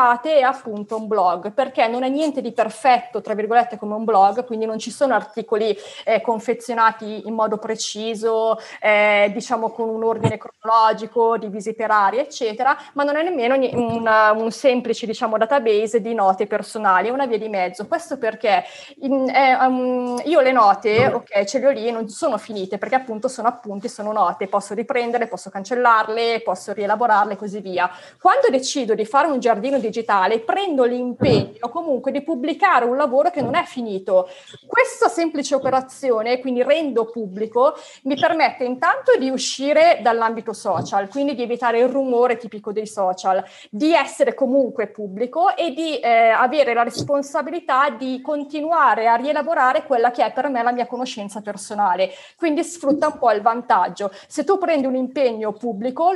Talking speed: 170 wpm